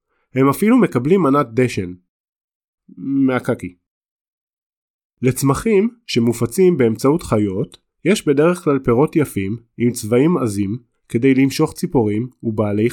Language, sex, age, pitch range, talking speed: Hebrew, male, 20-39, 115-180 Hz, 100 wpm